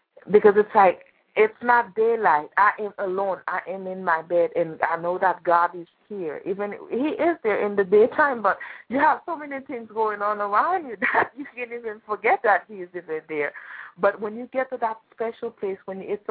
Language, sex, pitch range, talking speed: English, female, 190-240 Hz, 215 wpm